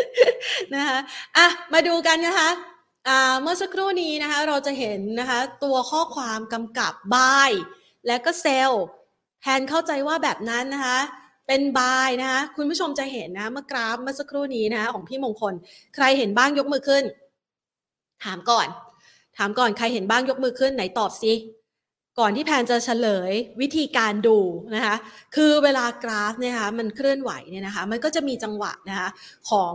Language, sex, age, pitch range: Thai, female, 30-49, 215-275 Hz